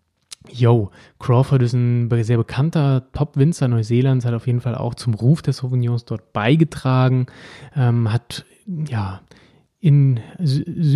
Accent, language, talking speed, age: German, German, 130 wpm, 20-39